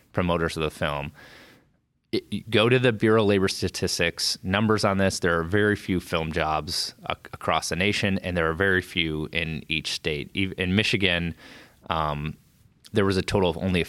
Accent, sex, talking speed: American, male, 180 wpm